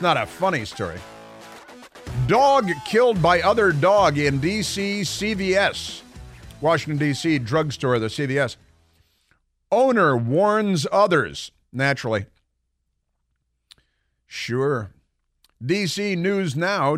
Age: 50-69